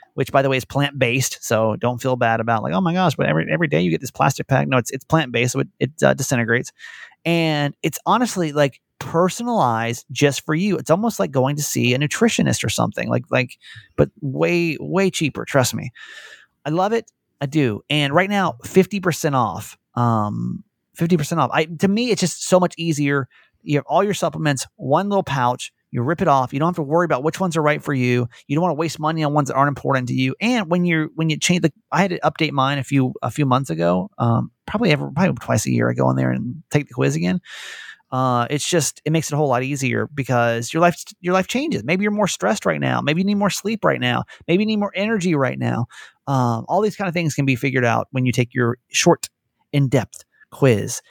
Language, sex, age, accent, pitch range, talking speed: English, male, 30-49, American, 130-180 Hz, 245 wpm